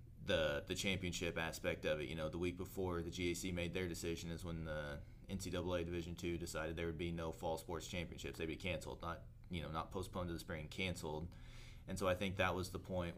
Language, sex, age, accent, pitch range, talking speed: English, male, 30-49, American, 80-95 Hz, 230 wpm